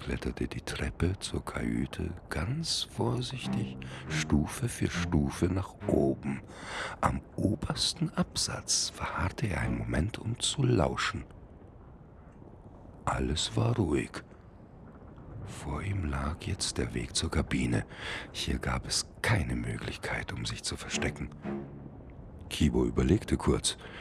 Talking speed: 110 wpm